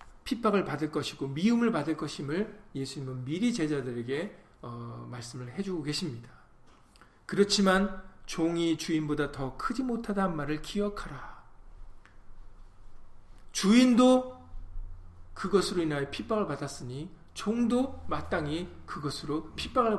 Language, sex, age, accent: Korean, male, 40-59, native